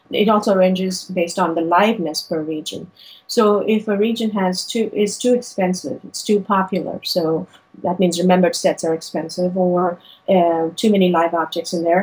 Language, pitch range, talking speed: English, 180-205 Hz, 180 wpm